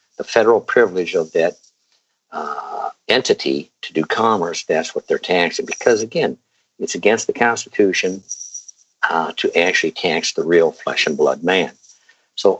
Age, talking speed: 60-79, 145 wpm